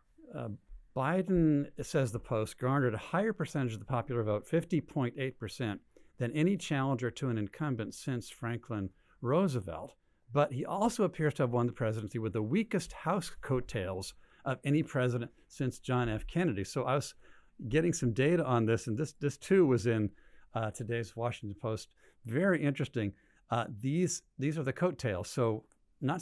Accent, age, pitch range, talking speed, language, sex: American, 50-69, 110-145 Hz, 165 wpm, English, male